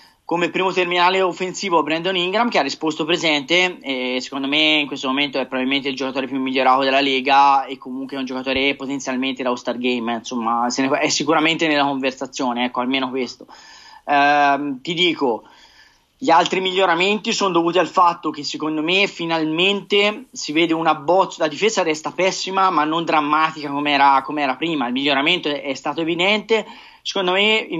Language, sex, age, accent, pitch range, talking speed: Italian, male, 20-39, native, 145-185 Hz, 175 wpm